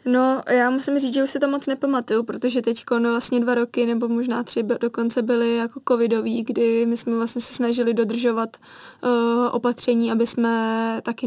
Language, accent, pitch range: Czech, native, 230-245 Hz